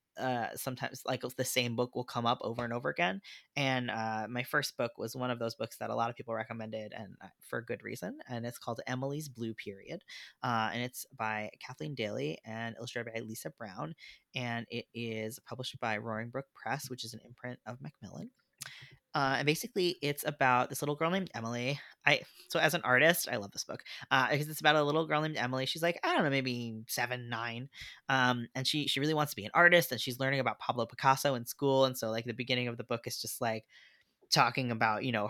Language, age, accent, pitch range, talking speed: English, 20-39, American, 115-135 Hz, 230 wpm